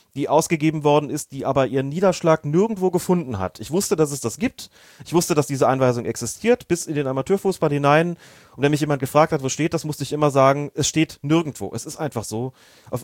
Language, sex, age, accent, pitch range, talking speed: German, male, 30-49, German, 125-155 Hz, 225 wpm